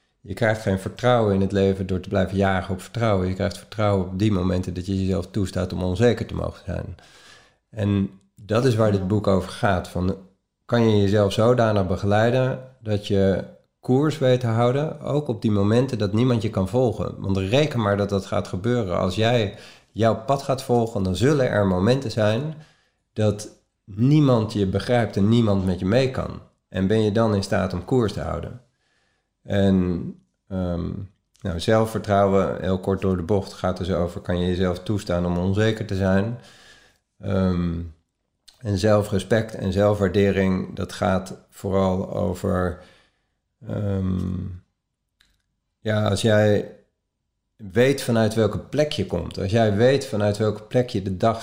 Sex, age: male, 40-59